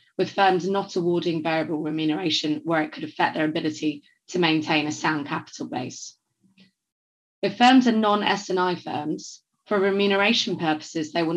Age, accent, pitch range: 20-39, British, 155-190 Hz